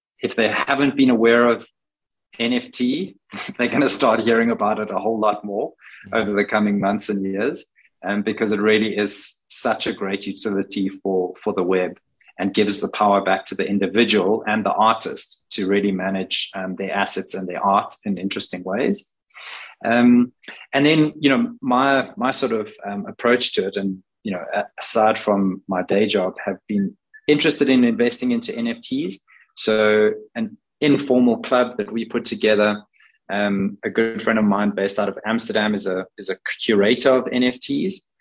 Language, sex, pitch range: English, male, 100-125 Hz